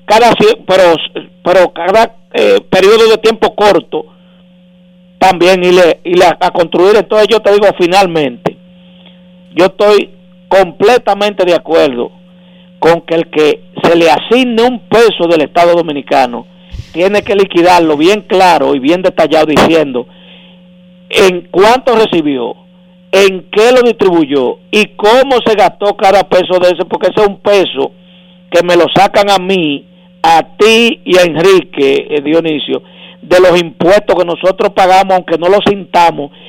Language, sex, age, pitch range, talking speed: Spanish, male, 50-69, 175-205 Hz, 150 wpm